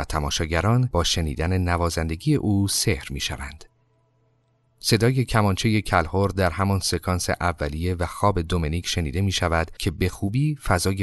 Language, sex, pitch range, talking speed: Persian, male, 90-125 Hz, 135 wpm